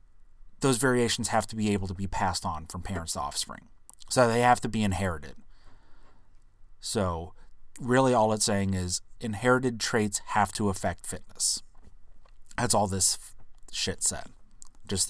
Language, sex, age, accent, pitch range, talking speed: English, male, 30-49, American, 95-110 Hz, 155 wpm